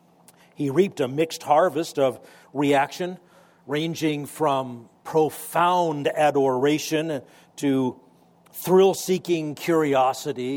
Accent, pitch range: American, 130-165 Hz